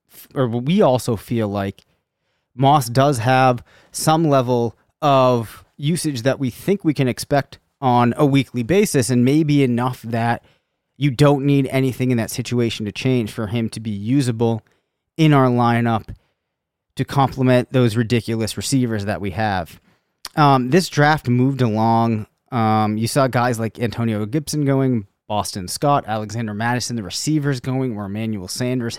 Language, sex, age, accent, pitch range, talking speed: English, male, 30-49, American, 110-135 Hz, 155 wpm